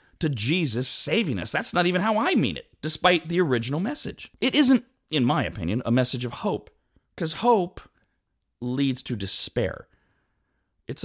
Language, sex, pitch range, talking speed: English, male, 115-175 Hz, 165 wpm